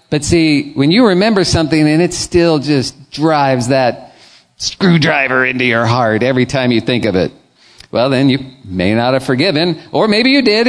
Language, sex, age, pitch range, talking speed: English, male, 50-69, 125-175 Hz, 185 wpm